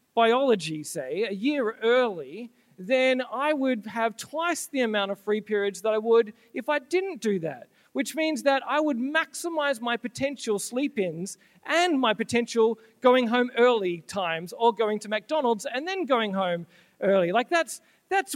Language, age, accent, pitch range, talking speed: English, 40-59, Australian, 200-265 Hz, 165 wpm